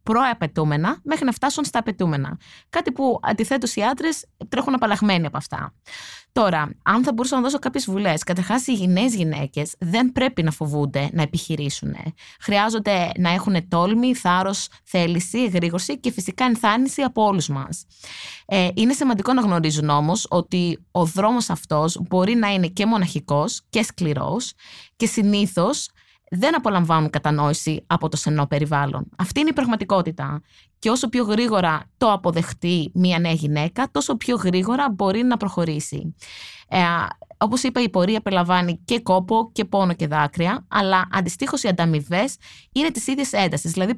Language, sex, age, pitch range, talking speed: Greek, female, 20-39, 165-235 Hz, 150 wpm